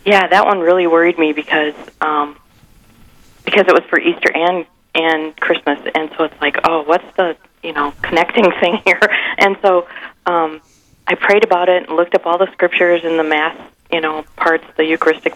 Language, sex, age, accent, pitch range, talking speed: English, female, 40-59, American, 150-170 Hz, 190 wpm